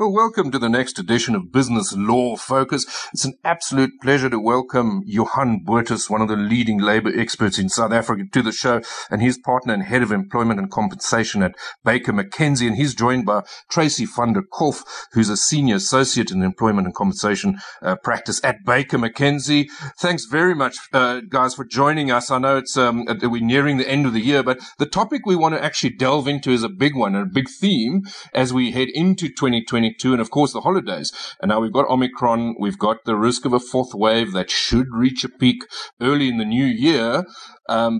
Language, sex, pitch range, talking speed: English, male, 115-145 Hz, 210 wpm